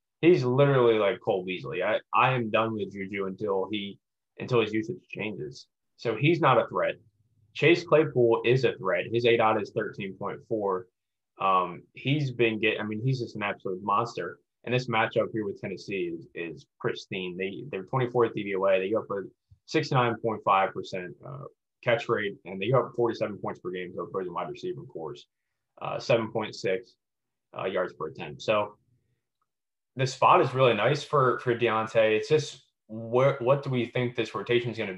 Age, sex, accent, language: 20-39, male, American, English